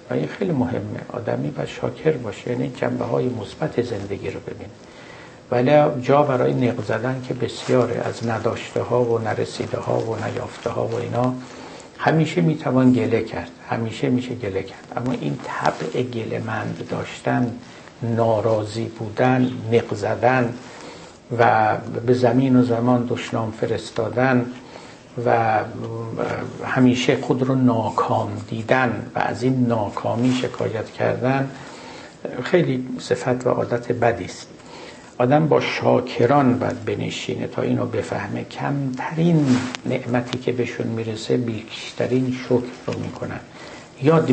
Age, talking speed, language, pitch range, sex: 60-79, 125 wpm, Persian, 115-130 Hz, male